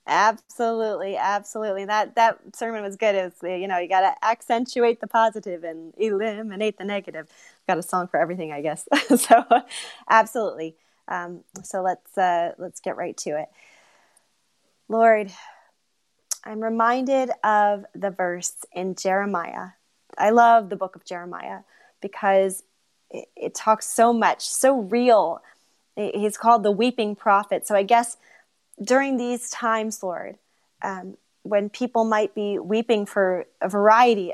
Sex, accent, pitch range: female, American, 190-230 Hz